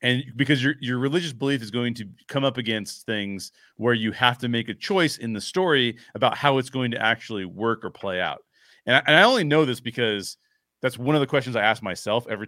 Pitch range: 105-130 Hz